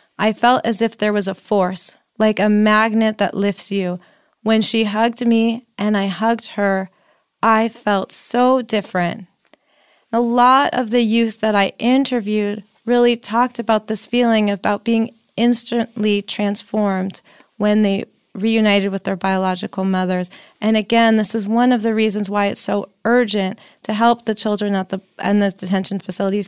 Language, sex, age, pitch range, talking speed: English, female, 30-49, 200-230 Hz, 165 wpm